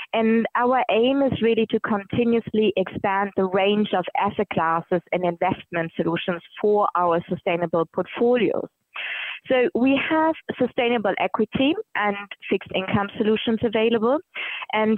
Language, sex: English, female